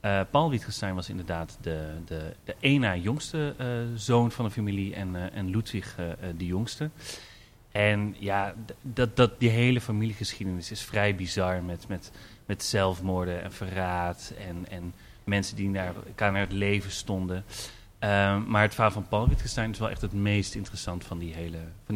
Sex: male